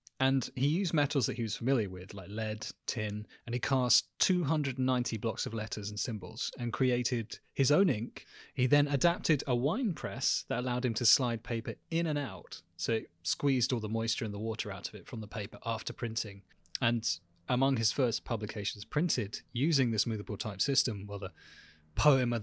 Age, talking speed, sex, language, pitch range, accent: 30-49, 195 wpm, male, English, 105-135 Hz, British